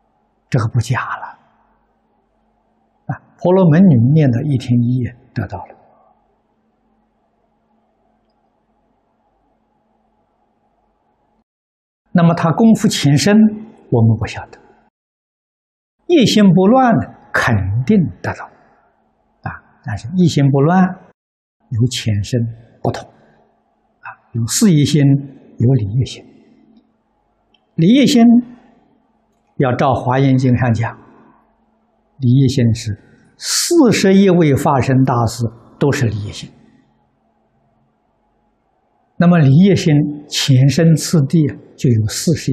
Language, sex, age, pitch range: Chinese, male, 60-79, 120-195 Hz